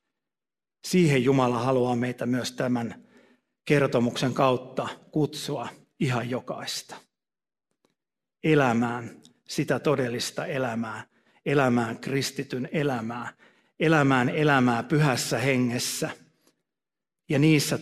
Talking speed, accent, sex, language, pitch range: 80 wpm, native, male, Finnish, 125-145 Hz